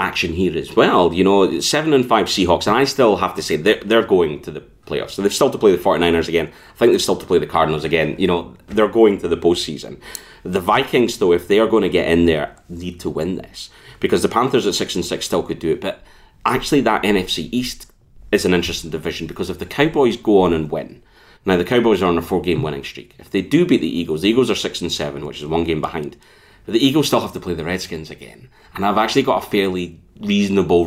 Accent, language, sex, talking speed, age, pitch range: British, English, male, 255 wpm, 30-49, 85-115 Hz